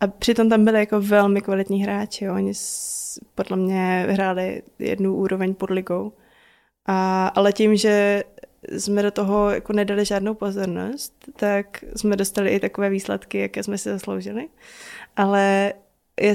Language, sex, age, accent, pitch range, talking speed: Czech, female, 20-39, native, 195-215 Hz, 145 wpm